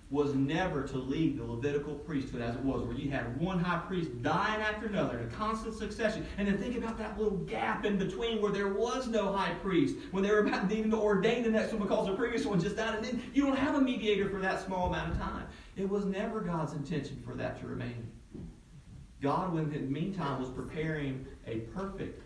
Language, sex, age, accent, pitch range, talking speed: English, male, 40-59, American, 135-210 Hz, 225 wpm